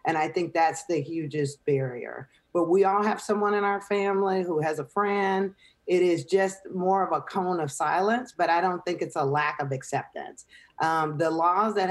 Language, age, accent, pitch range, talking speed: English, 40-59, American, 150-185 Hz, 205 wpm